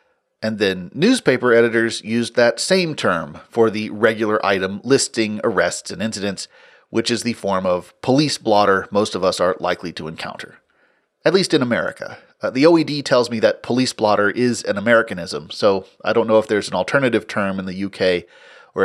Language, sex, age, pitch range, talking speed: English, male, 30-49, 105-135 Hz, 185 wpm